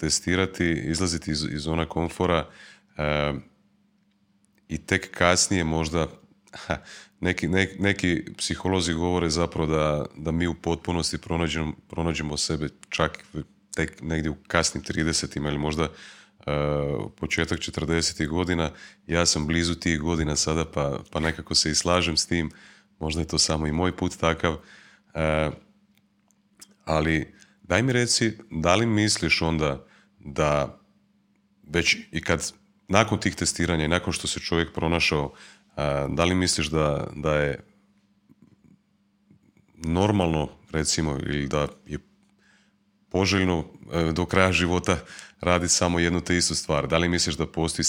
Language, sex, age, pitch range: Croatian, male, 30-49, 80-95 Hz